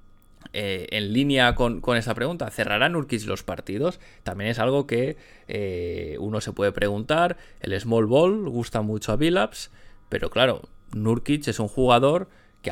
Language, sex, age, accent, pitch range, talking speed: Spanish, male, 20-39, Spanish, 100-125 Hz, 160 wpm